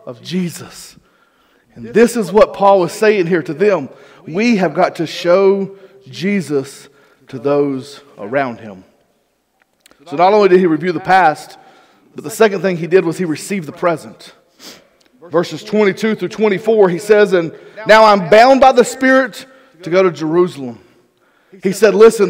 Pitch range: 185-235 Hz